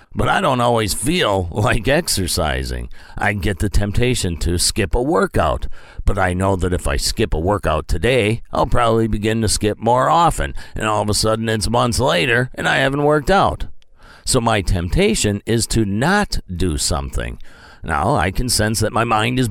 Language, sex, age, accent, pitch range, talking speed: English, male, 50-69, American, 90-120 Hz, 190 wpm